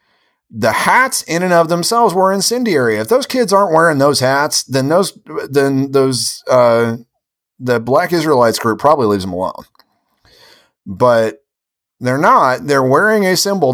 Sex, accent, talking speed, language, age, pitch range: male, American, 155 wpm, English, 30-49, 120-185 Hz